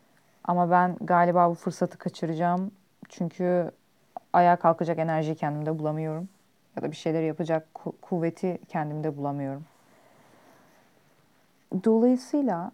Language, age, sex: Turkish, 30-49, female